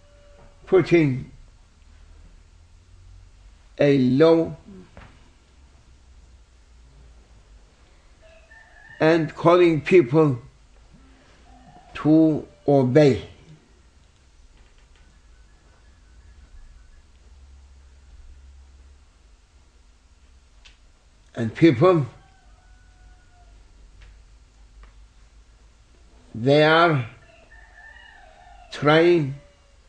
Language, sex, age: English, male, 60-79